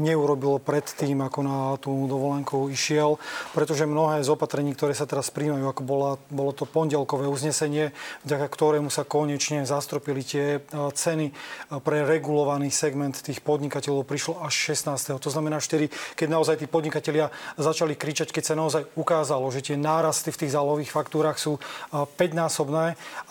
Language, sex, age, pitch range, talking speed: Slovak, male, 30-49, 145-160 Hz, 150 wpm